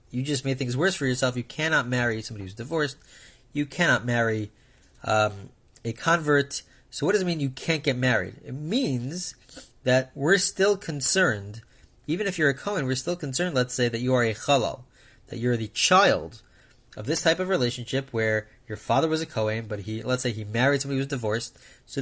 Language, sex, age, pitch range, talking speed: English, male, 30-49, 115-150 Hz, 205 wpm